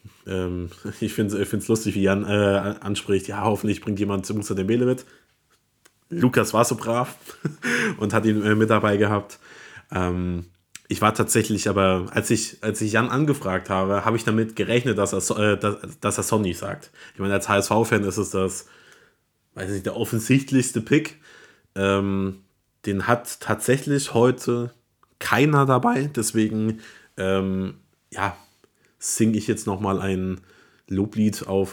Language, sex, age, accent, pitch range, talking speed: German, male, 20-39, German, 95-110 Hz, 155 wpm